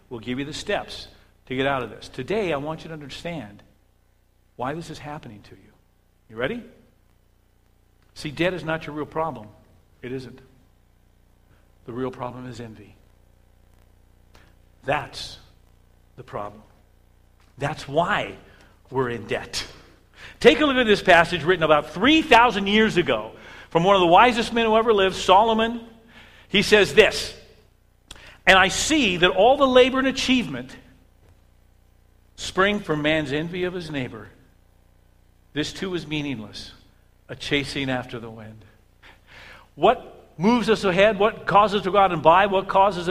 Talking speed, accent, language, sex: 150 wpm, American, English, male